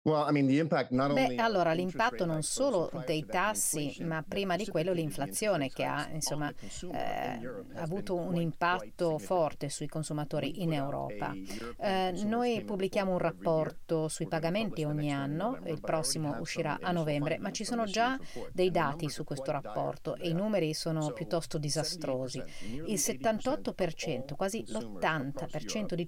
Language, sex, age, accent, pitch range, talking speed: Italian, female, 40-59, native, 155-210 Hz, 135 wpm